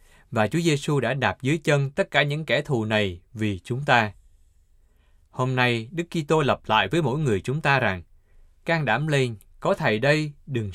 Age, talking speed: 20-39, 200 wpm